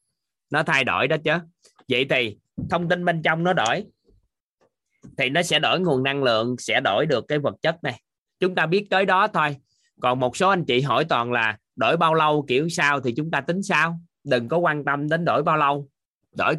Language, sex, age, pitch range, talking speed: Vietnamese, male, 20-39, 130-170 Hz, 215 wpm